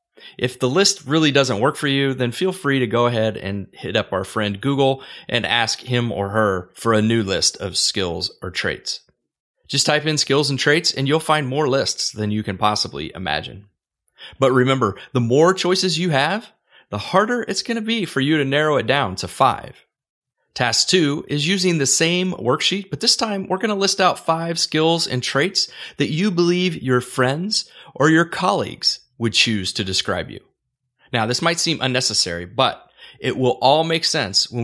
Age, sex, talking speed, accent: 30-49, male, 195 wpm, American